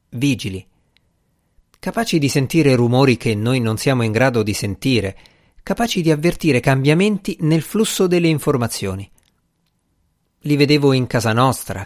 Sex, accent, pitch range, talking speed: male, native, 115-165 Hz, 130 wpm